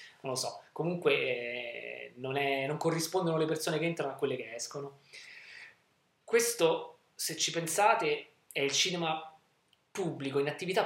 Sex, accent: male, native